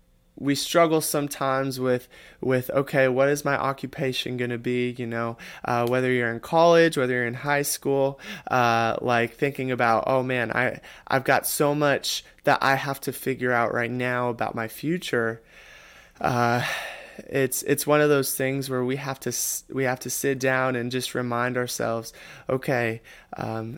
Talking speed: 175 wpm